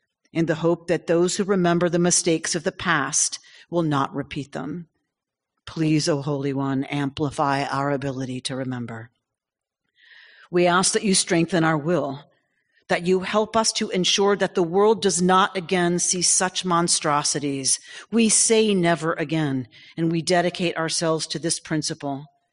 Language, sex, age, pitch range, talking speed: English, female, 40-59, 150-185 Hz, 155 wpm